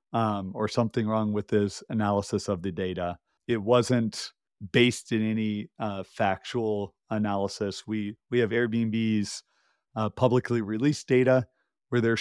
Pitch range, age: 110-120 Hz, 40-59